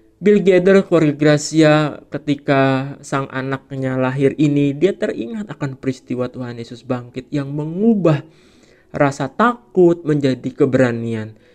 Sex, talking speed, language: male, 110 wpm, Indonesian